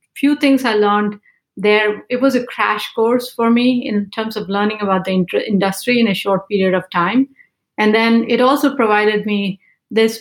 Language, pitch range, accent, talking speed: English, 200-240 Hz, Indian, 195 wpm